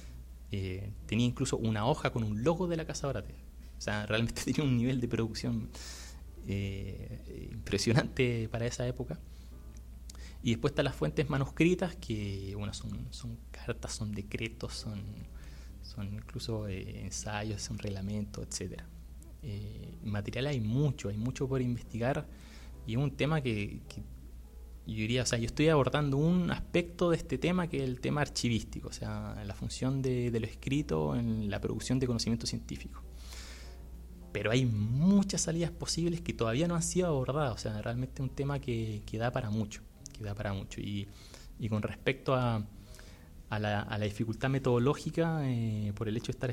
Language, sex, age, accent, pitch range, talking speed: Spanish, male, 20-39, Argentinian, 100-130 Hz, 175 wpm